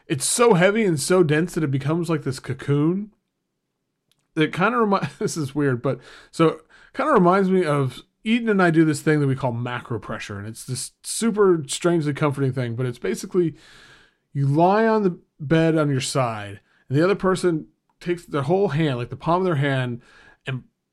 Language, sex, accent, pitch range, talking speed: English, male, American, 140-185 Hz, 200 wpm